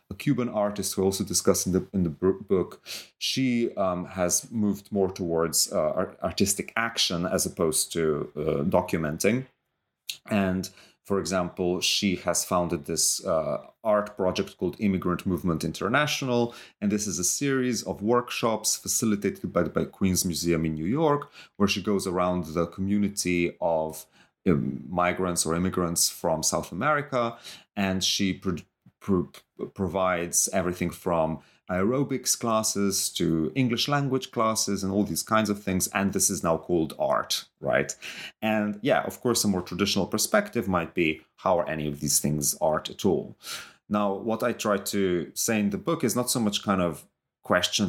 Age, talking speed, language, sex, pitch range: 30-49, 165 wpm, English, male, 85-110 Hz